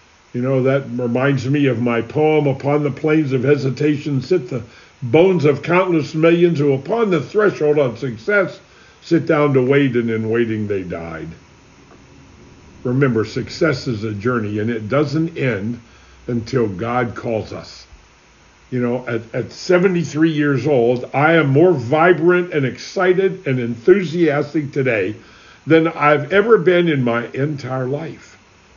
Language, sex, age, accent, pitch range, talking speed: English, male, 60-79, American, 120-170 Hz, 150 wpm